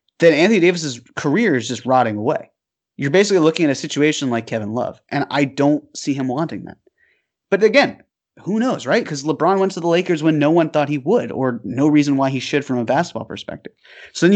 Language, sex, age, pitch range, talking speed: English, male, 20-39, 135-175 Hz, 220 wpm